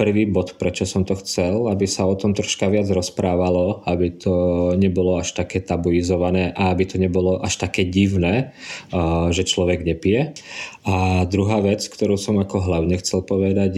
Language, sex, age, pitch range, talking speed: Slovak, male, 20-39, 90-100 Hz, 165 wpm